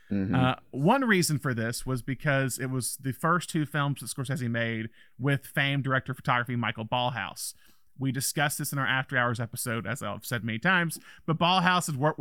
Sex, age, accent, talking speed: male, 30-49, American, 195 wpm